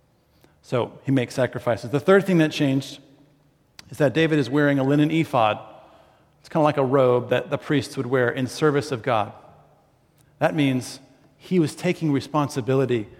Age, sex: 40-59, male